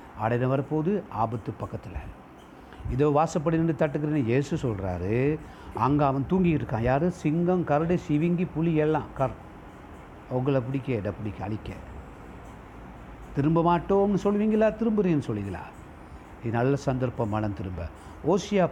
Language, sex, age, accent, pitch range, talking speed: Tamil, male, 60-79, native, 85-145 Hz, 120 wpm